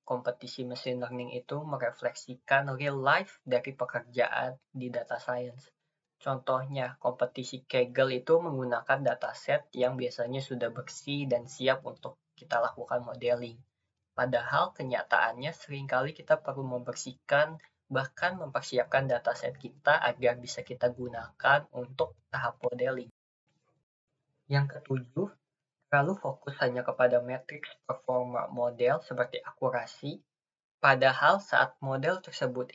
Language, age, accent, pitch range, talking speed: Indonesian, 20-39, native, 125-140 Hz, 115 wpm